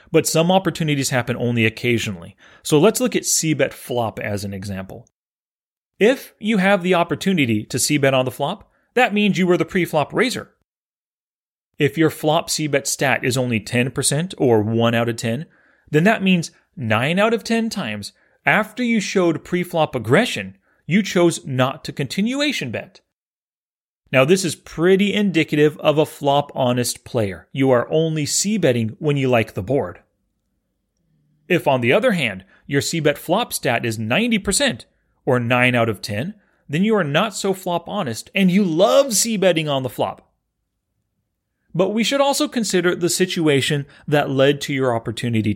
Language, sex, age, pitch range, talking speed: English, male, 30-49, 125-185 Hz, 165 wpm